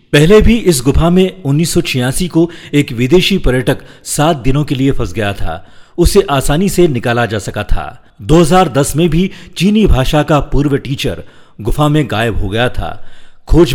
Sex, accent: male, native